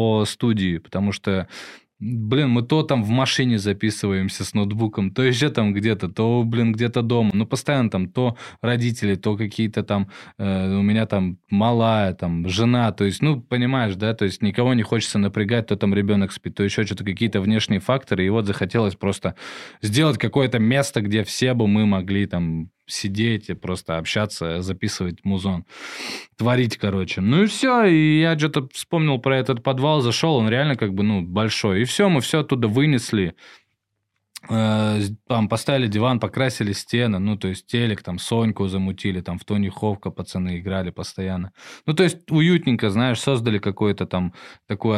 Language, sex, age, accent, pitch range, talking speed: Russian, male, 20-39, native, 100-125 Hz, 170 wpm